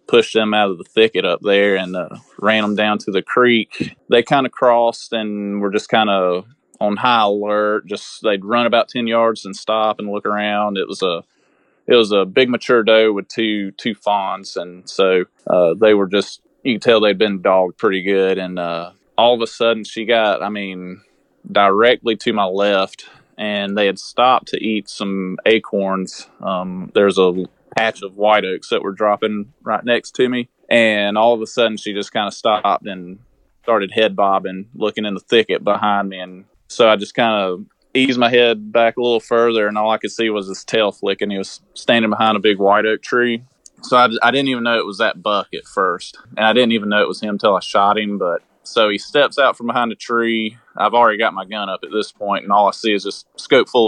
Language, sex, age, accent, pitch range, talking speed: English, male, 20-39, American, 100-115 Hz, 225 wpm